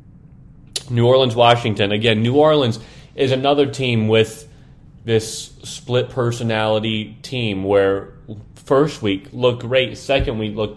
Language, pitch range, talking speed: English, 110-140 Hz, 115 wpm